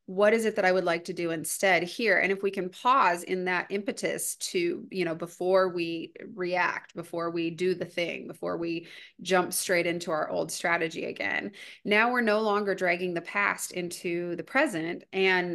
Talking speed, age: 195 wpm, 30-49